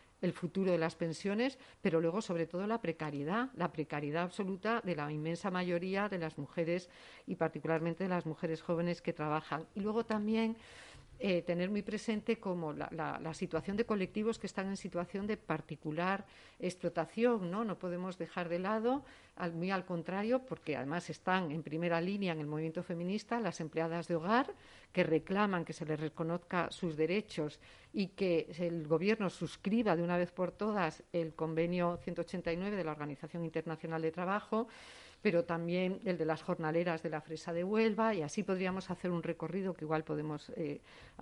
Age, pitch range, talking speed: 50-69, 160-200 Hz, 180 wpm